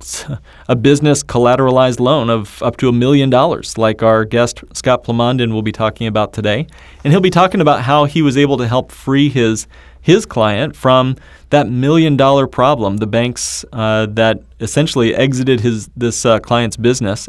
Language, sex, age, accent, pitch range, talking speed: English, male, 30-49, American, 110-130 Hz, 175 wpm